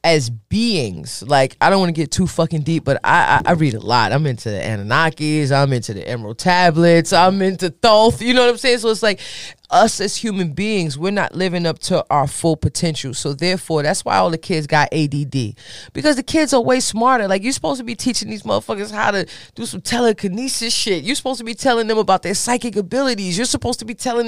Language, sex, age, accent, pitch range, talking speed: English, female, 20-39, American, 145-205 Hz, 230 wpm